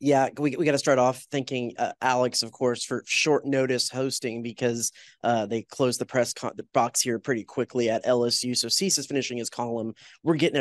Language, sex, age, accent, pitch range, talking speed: English, male, 20-39, American, 125-145 Hz, 215 wpm